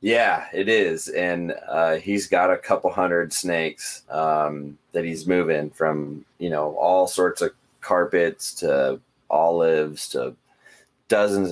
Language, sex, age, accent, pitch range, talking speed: English, male, 20-39, American, 75-95 Hz, 135 wpm